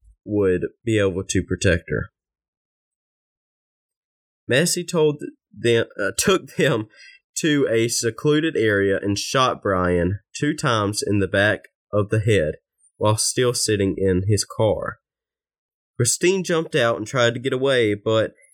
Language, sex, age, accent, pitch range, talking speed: English, male, 20-39, American, 105-150 Hz, 135 wpm